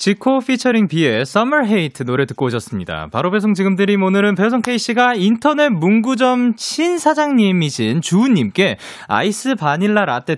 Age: 20-39